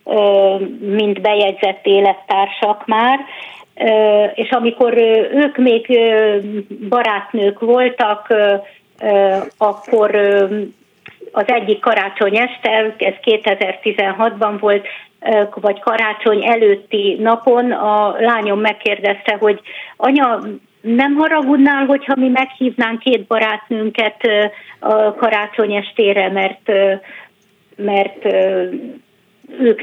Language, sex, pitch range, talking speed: Hungarian, female, 195-230 Hz, 80 wpm